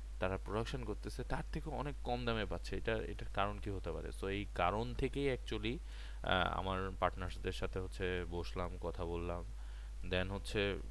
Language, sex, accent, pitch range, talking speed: Bengali, male, native, 80-100 Hz, 160 wpm